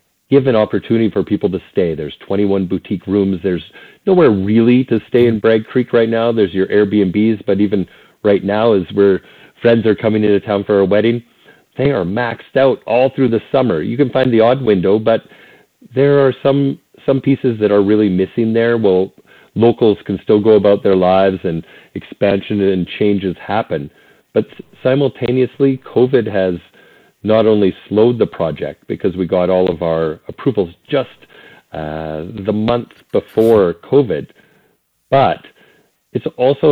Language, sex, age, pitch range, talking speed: English, male, 40-59, 95-120 Hz, 165 wpm